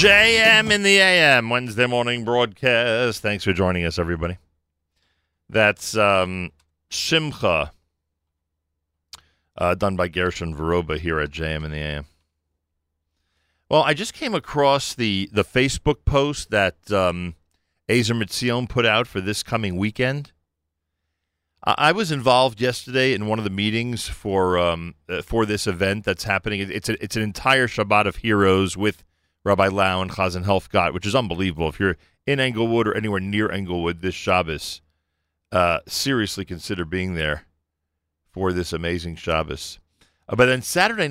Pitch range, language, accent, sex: 80-115 Hz, English, American, male